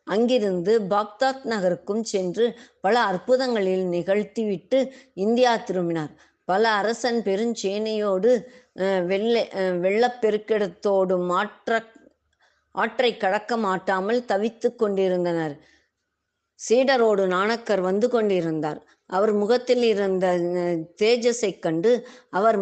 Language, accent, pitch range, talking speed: Tamil, native, 185-235 Hz, 75 wpm